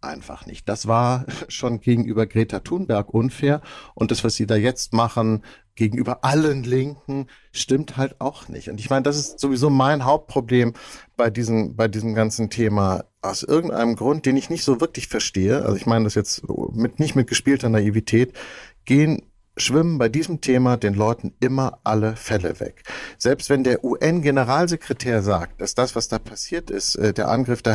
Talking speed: 170 wpm